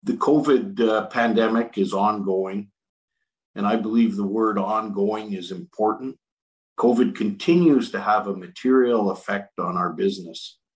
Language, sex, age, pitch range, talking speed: English, male, 50-69, 100-145 Hz, 135 wpm